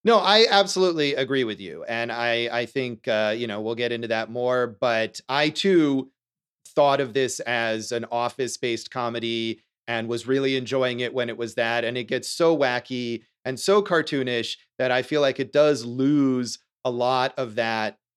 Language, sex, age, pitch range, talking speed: English, male, 30-49, 120-160 Hz, 185 wpm